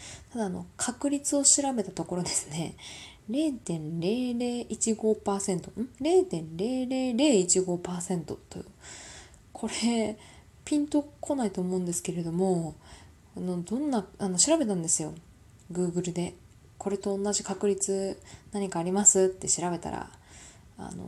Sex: female